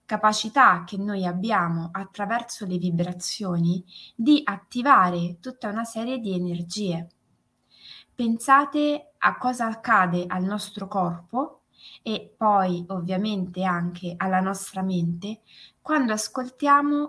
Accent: native